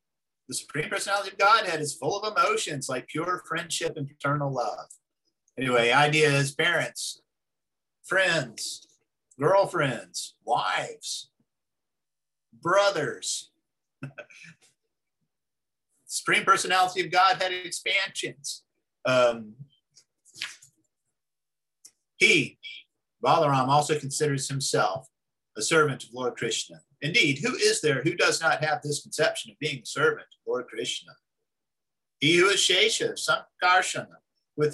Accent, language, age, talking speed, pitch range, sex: American, English, 50-69, 105 wpm, 140-195 Hz, male